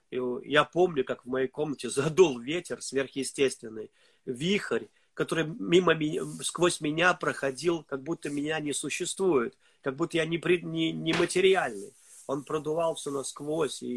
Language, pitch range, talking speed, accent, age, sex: Russian, 130-165 Hz, 130 wpm, native, 30-49, male